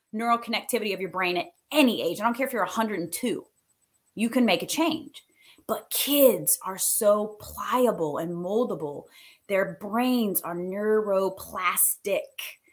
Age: 20-39